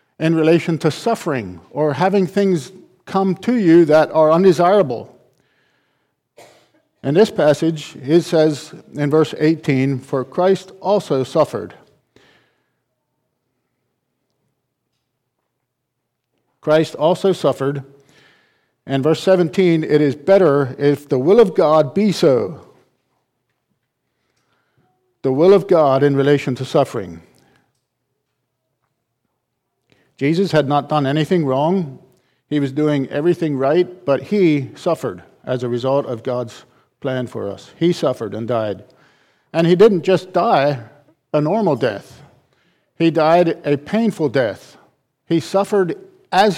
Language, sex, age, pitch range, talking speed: English, male, 50-69, 135-165 Hz, 115 wpm